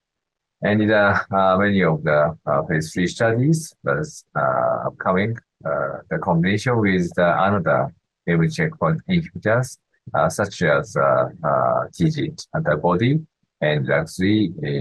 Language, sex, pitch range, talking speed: English, male, 90-125 Hz, 130 wpm